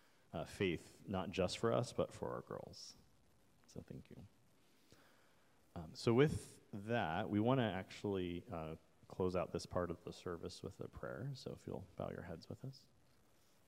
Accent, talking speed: American, 170 wpm